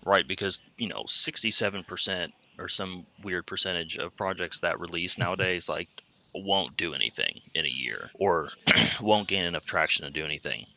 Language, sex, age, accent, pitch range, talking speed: English, male, 30-49, American, 85-100 Hz, 160 wpm